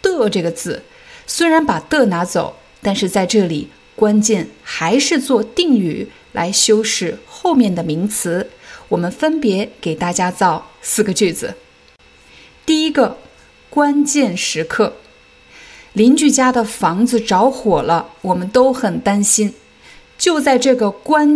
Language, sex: Chinese, female